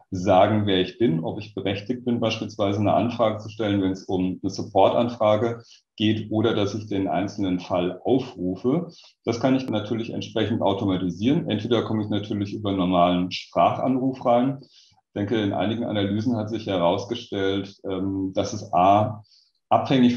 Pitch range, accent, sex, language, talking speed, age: 95-115 Hz, German, male, German, 160 wpm, 30-49